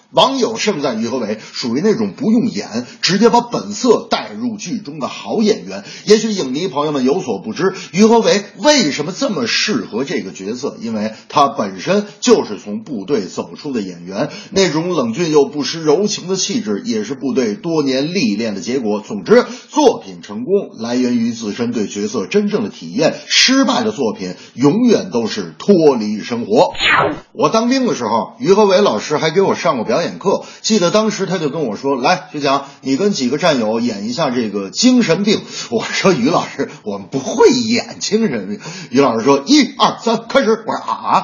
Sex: male